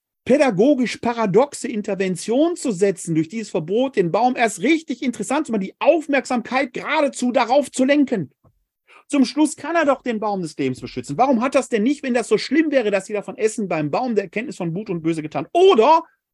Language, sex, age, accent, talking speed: German, male, 40-59, German, 200 wpm